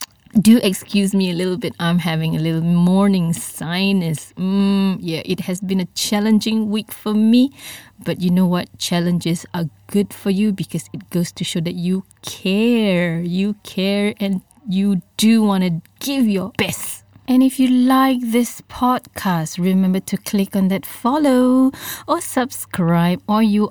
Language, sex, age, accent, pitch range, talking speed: English, female, 20-39, Malaysian, 175-225 Hz, 165 wpm